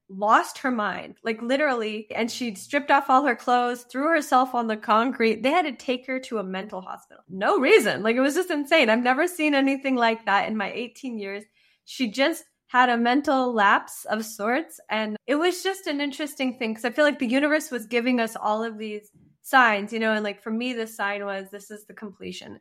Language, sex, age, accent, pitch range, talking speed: English, female, 10-29, American, 205-245 Hz, 225 wpm